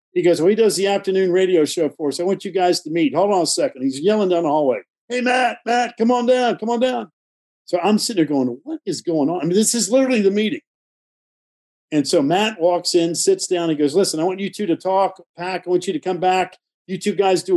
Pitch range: 160-215 Hz